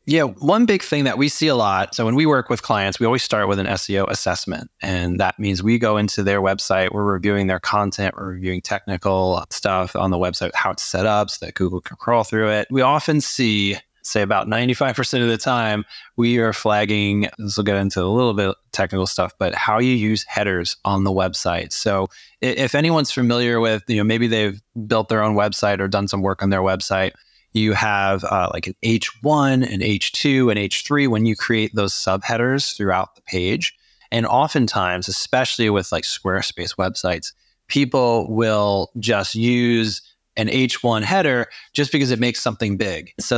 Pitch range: 100-120 Hz